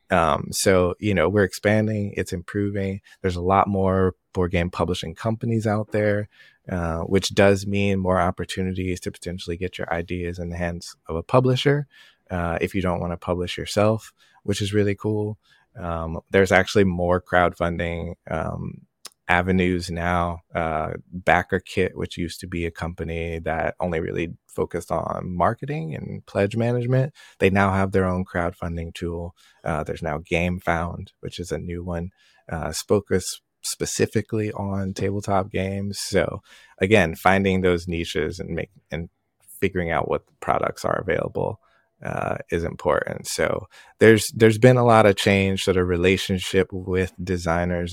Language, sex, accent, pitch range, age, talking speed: English, male, American, 85-100 Hz, 20-39, 155 wpm